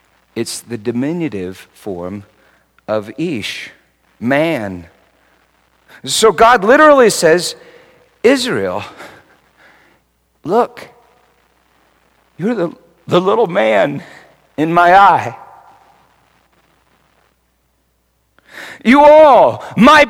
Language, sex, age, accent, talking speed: English, male, 50-69, American, 70 wpm